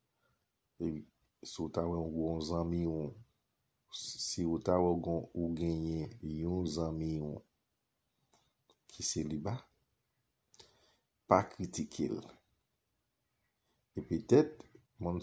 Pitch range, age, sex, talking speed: 80-90 Hz, 50-69, male, 100 wpm